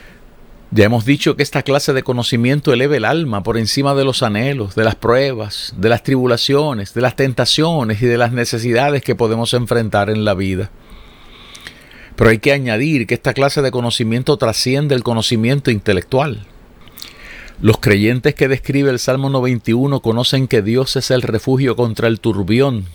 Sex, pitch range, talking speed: male, 110-135 Hz, 165 wpm